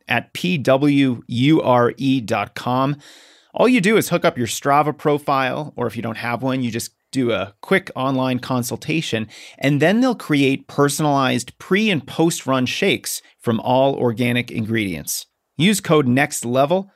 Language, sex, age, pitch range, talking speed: English, male, 30-49, 120-150 Hz, 140 wpm